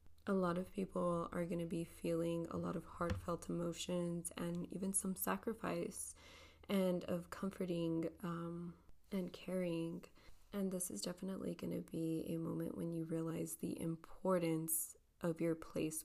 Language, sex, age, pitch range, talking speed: English, female, 20-39, 160-175 Hz, 155 wpm